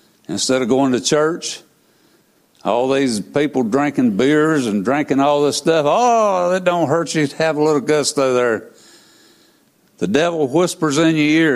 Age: 60-79